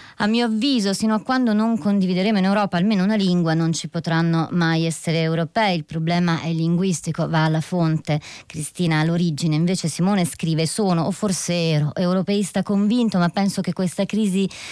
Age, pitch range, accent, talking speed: 30-49, 165-200 Hz, native, 170 wpm